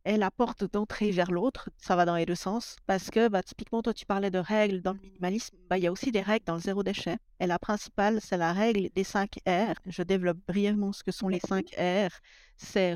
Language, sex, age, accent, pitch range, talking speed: French, female, 50-69, French, 185-220 Hz, 250 wpm